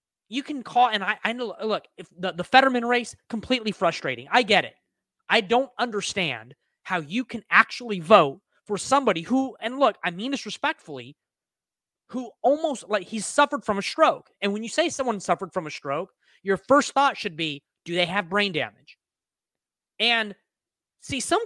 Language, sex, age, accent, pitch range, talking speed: English, male, 30-49, American, 175-250 Hz, 180 wpm